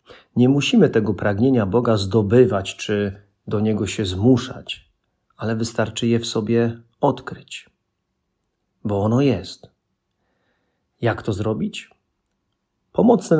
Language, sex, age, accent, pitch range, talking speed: Polish, male, 40-59, native, 105-125 Hz, 105 wpm